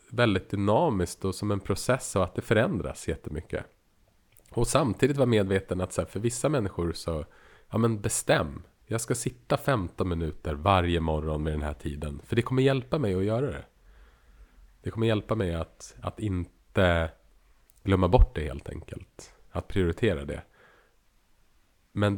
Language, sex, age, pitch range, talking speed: Swedish, male, 30-49, 80-110 Hz, 155 wpm